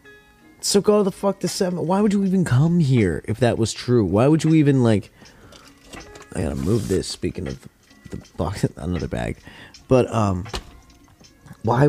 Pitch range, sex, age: 95-135 Hz, male, 20-39